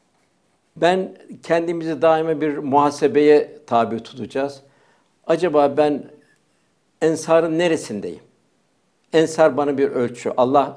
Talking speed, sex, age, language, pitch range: 90 wpm, male, 60-79, Turkish, 140-160 Hz